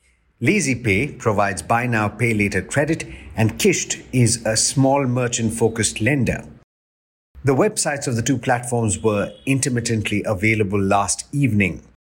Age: 50-69